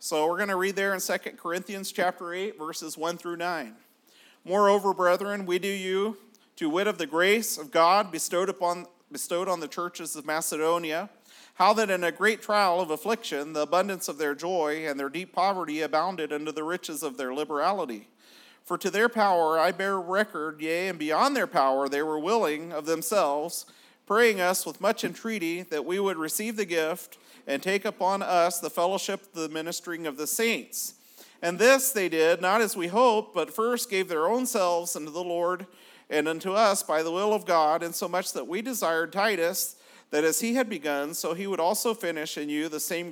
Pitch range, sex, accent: 160-200 Hz, male, American